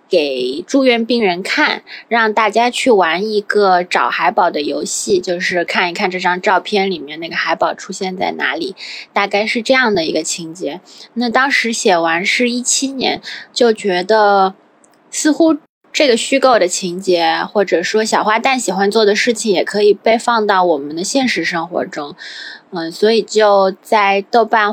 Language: Chinese